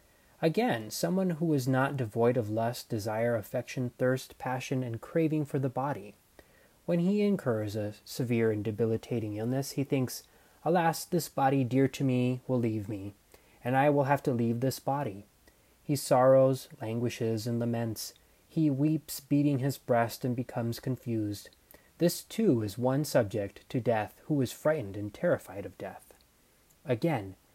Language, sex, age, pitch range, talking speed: English, male, 30-49, 115-145 Hz, 155 wpm